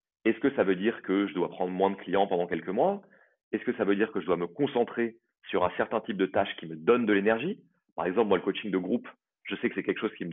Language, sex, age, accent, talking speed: French, male, 30-49, French, 295 wpm